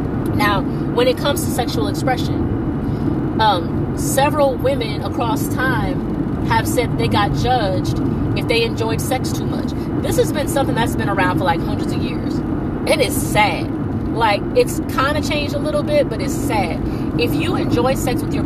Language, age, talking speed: English, 30-49, 180 wpm